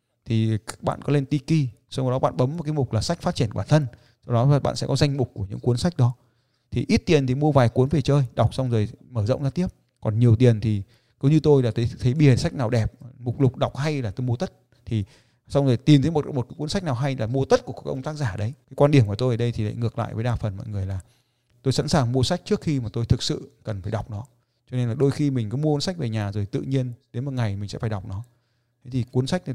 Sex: male